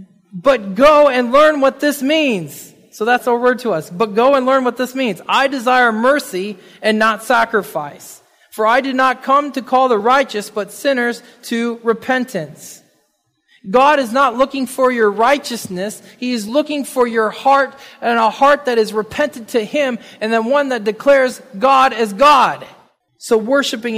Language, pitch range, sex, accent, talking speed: English, 220-275 Hz, male, American, 175 wpm